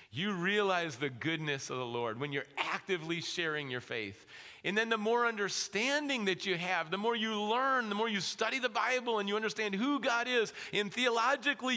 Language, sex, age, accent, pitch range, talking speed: English, male, 40-59, American, 165-245 Hz, 200 wpm